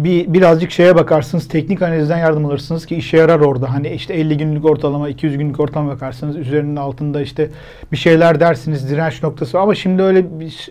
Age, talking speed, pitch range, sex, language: 40-59, 190 wpm, 155-195 Hz, male, Turkish